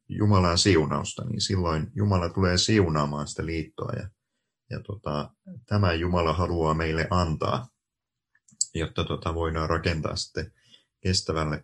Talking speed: 110 wpm